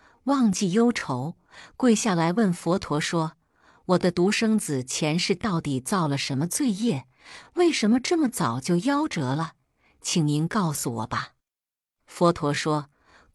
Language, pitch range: Chinese, 140-205 Hz